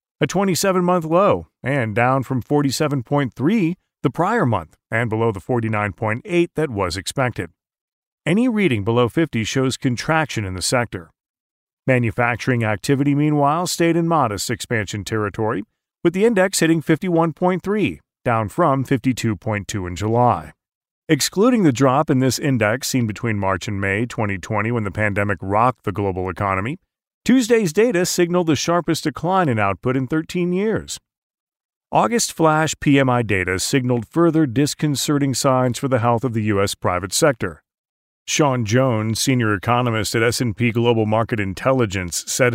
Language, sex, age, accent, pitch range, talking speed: English, male, 40-59, American, 110-155 Hz, 140 wpm